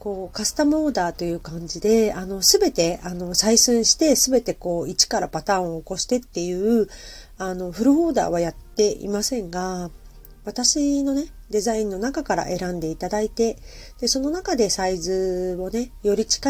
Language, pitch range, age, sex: Japanese, 180-230 Hz, 40-59, female